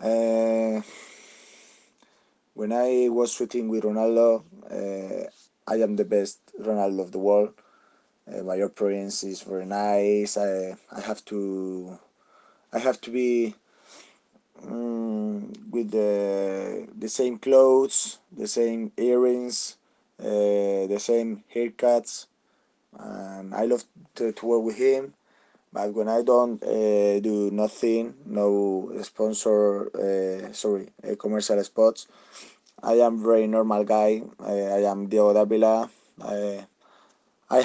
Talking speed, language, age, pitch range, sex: 125 wpm, Italian, 30-49, 100-115 Hz, male